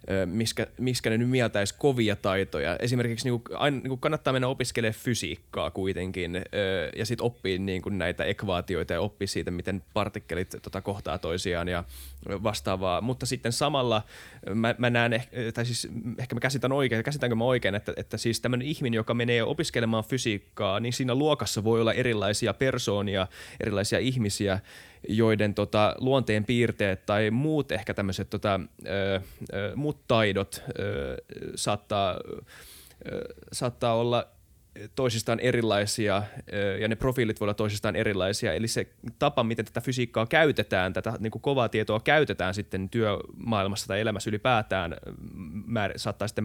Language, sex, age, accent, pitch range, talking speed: Finnish, male, 20-39, native, 100-125 Hz, 140 wpm